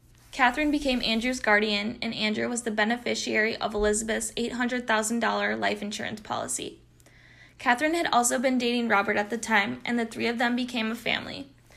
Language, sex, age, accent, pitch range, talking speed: English, female, 10-29, American, 215-240 Hz, 165 wpm